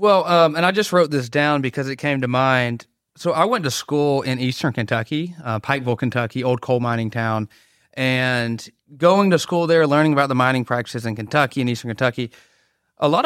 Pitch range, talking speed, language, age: 120-145 Hz, 205 wpm, English, 30-49